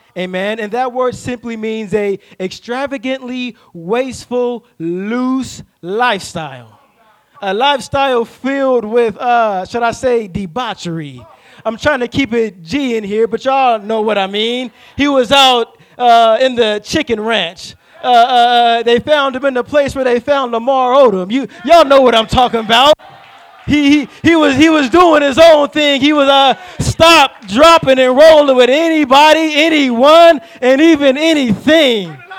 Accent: American